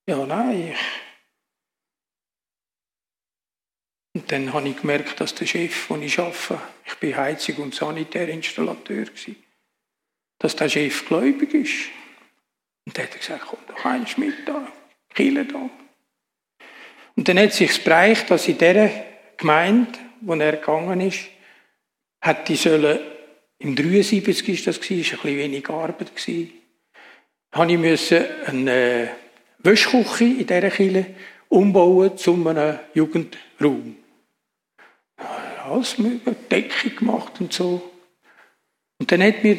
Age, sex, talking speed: 60-79, male, 125 wpm